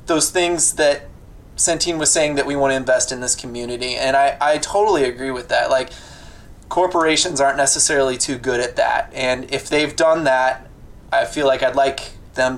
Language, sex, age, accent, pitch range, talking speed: English, male, 20-39, American, 130-170 Hz, 190 wpm